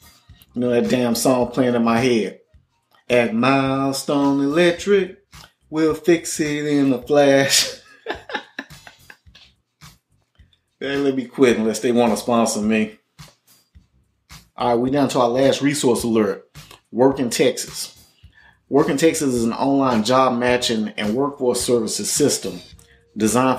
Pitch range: 120-145 Hz